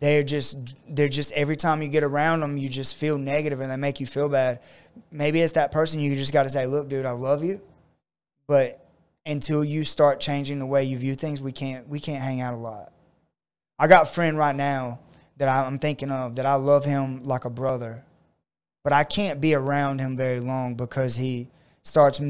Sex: male